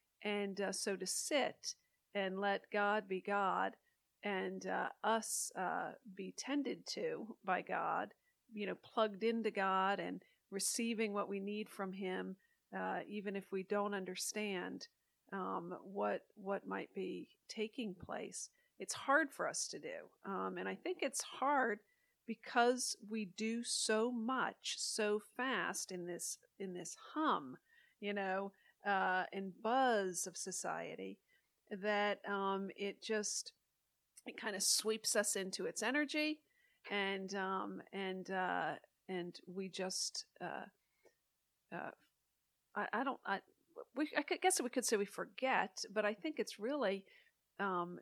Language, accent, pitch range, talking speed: English, American, 190-240 Hz, 140 wpm